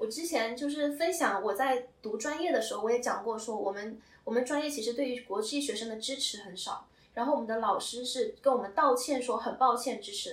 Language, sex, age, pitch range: Chinese, female, 10-29, 220-280 Hz